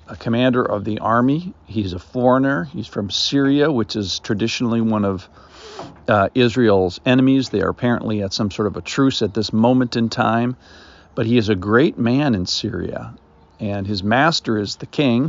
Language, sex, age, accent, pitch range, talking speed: English, male, 50-69, American, 95-120 Hz, 180 wpm